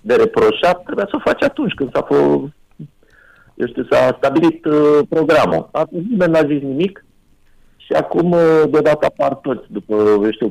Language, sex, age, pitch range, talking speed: Romanian, male, 50-69, 110-175 Hz, 155 wpm